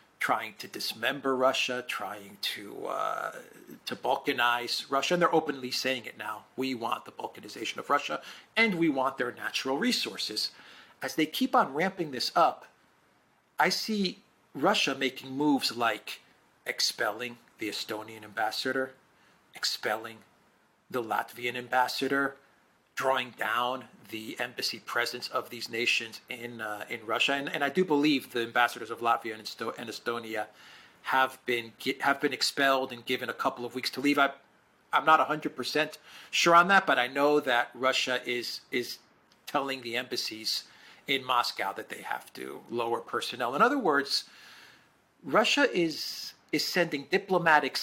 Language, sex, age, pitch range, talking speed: English, male, 40-59, 120-150 Hz, 150 wpm